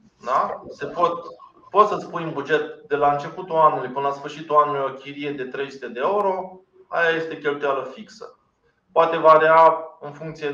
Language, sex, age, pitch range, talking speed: Romanian, male, 20-39, 145-165 Hz, 170 wpm